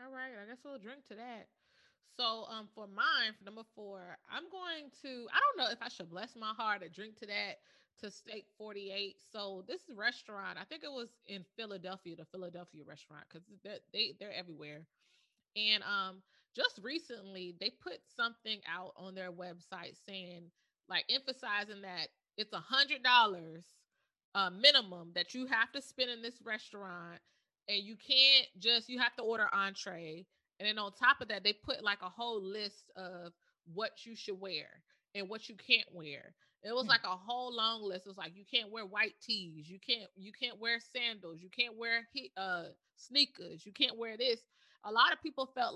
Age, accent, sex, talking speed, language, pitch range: 20-39, American, female, 195 wpm, English, 195-260 Hz